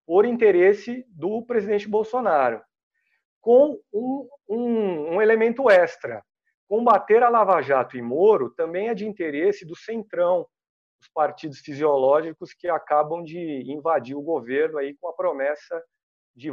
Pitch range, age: 145-220 Hz, 50-69